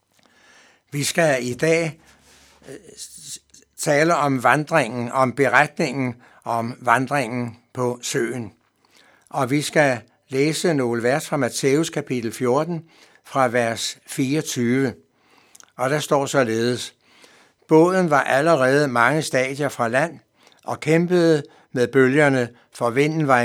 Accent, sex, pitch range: native, male, 125-155 Hz